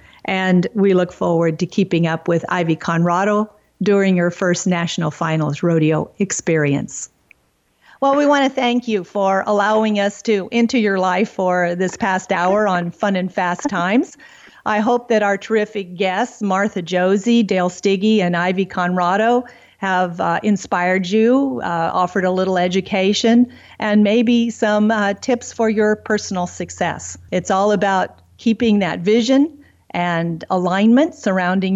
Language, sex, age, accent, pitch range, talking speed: English, female, 50-69, American, 180-230 Hz, 150 wpm